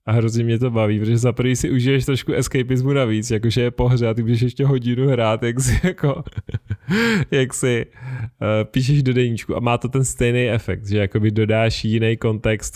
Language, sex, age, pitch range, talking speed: Czech, male, 20-39, 100-120 Hz, 185 wpm